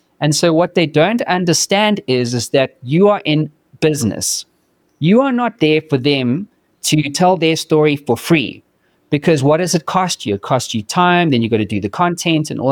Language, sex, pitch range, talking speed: English, male, 130-175 Hz, 210 wpm